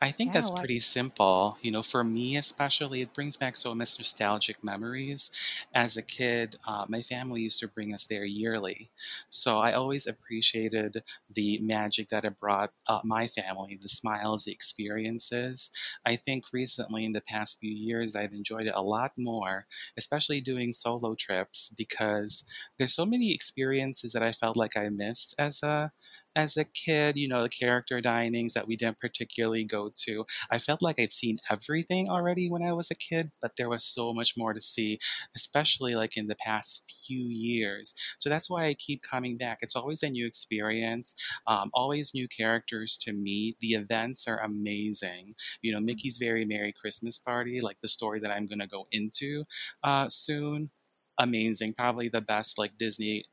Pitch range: 110-130 Hz